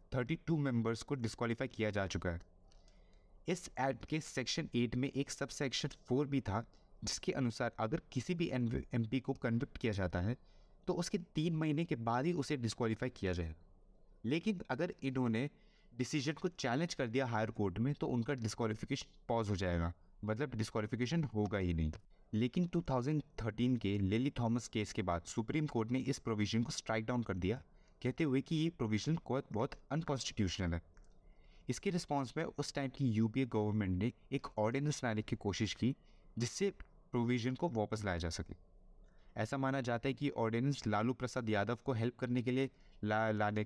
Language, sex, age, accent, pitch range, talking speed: Hindi, male, 20-39, native, 105-140 Hz, 175 wpm